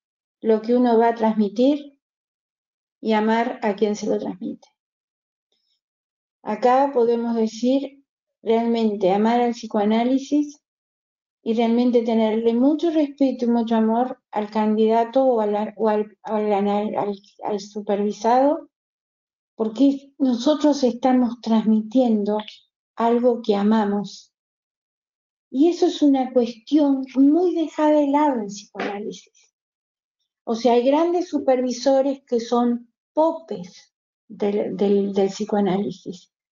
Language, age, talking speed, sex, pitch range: Spanish, 50-69, 115 wpm, female, 215-275 Hz